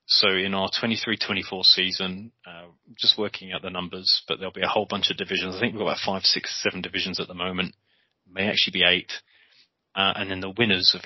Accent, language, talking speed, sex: British, English, 220 wpm, male